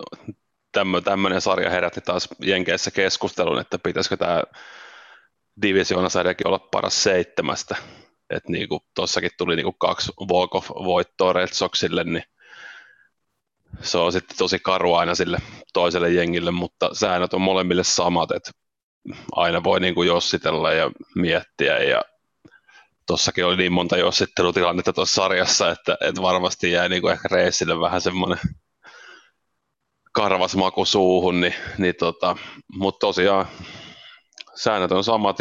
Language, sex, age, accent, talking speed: Finnish, male, 30-49, native, 120 wpm